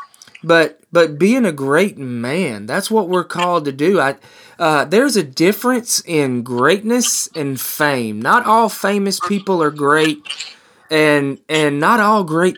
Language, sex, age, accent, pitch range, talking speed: English, male, 20-39, American, 130-185 Hz, 155 wpm